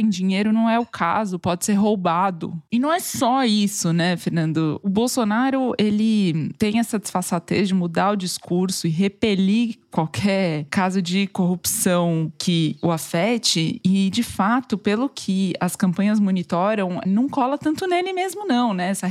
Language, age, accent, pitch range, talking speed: Portuguese, 20-39, Brazilian, 185-230 Hz, 155 wpm